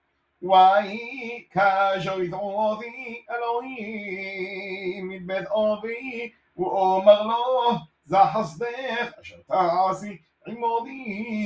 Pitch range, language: 190-230 Hz, Hebrew